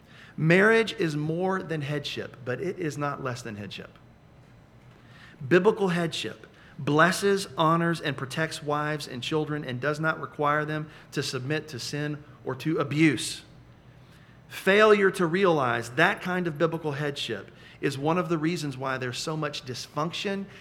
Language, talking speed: English, 150 wpm